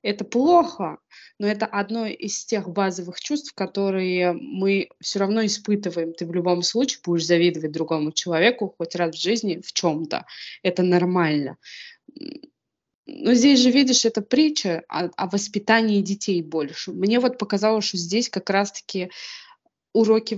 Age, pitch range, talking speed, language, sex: 20-39, 180-225 Hz, 140 wpm, Russian, female